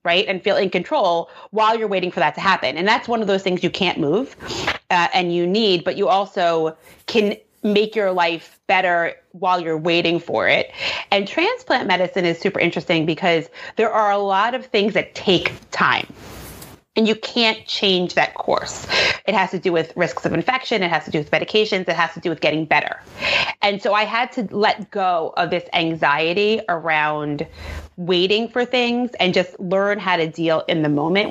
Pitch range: 165-205 Hz